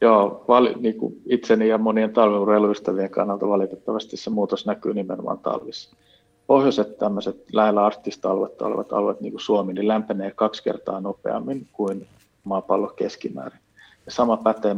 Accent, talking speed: native, 130 wpm